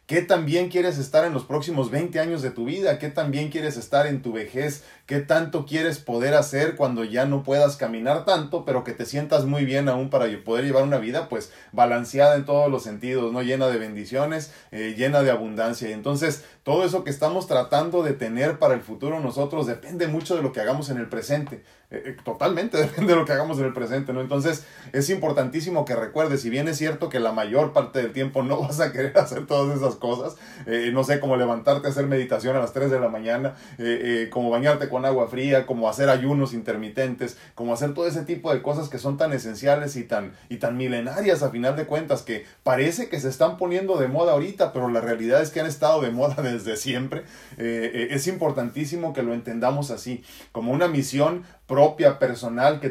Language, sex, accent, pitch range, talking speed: Spanish, male, Mexican, 125-155 Hz, 215 wpm